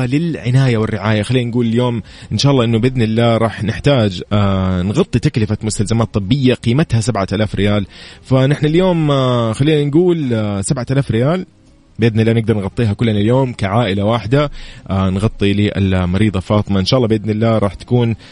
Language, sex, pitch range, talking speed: Arabic, male, 105-130 Hz, 150 wpm